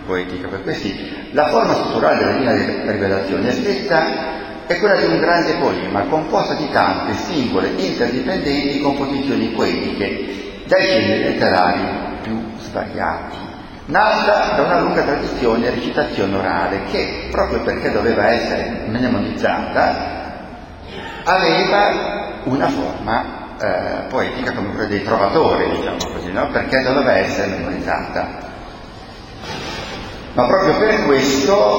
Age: 40-59